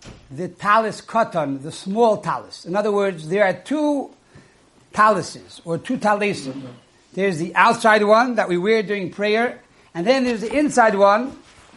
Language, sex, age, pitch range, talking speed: English, male, 60-79, 190-240 Hz, 160 wpm